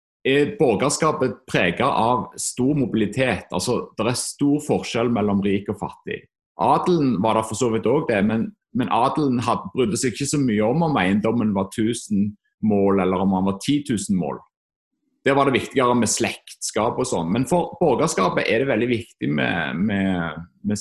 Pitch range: 100-145 Hz